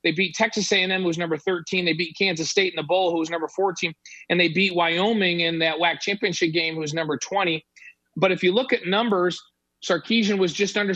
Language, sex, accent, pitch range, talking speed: English, male, American, 165-205 Hz, 230 wpm